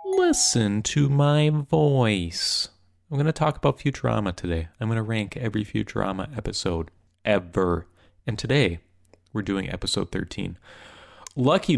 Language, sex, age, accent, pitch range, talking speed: English, male, 30-49, American, 90-130 Hz, 135 wpm